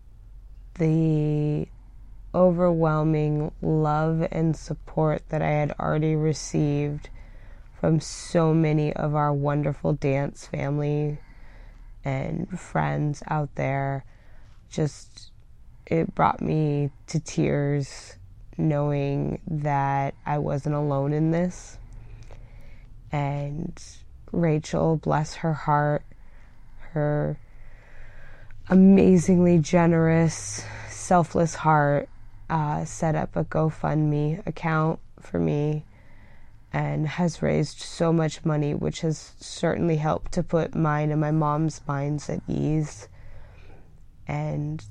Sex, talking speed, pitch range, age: female, 100 wpm, 110-155 Hz, 20-39